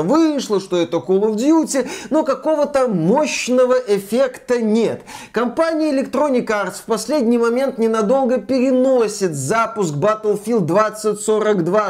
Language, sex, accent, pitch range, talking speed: Russian, male, native, 205-230 Hz, 110 wpm